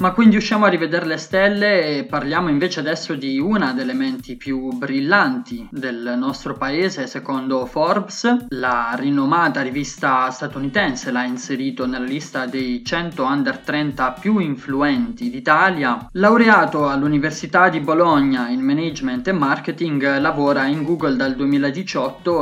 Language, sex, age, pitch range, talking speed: Italian, male, 20-39, 135-200 Hz, 135 wpm